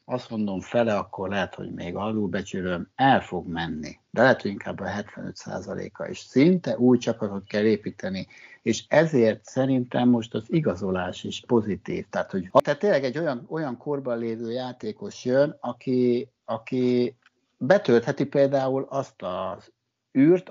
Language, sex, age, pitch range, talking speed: Hungarian, male, 60-79, 105-125 Hz, 145 wpm